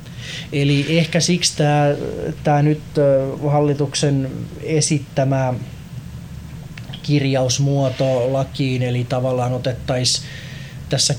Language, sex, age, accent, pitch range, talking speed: Finnish, male, 20-39, native, 130-150 Hz, 75 wpm